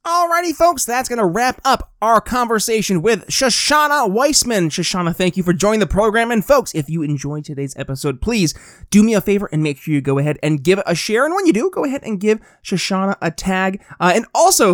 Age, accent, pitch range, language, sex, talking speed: 30-49, American, 160-230 Hz, English, male, 225 wpm